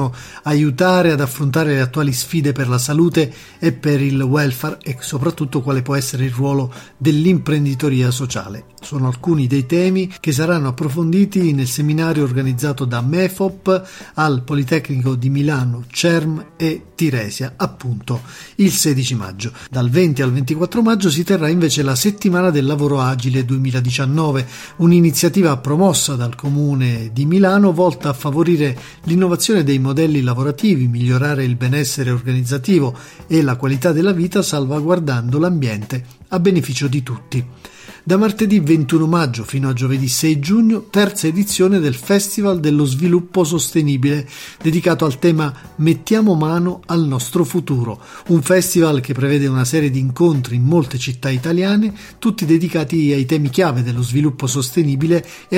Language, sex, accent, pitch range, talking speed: Italian, male, native, 130-170 Hz, 145 wpm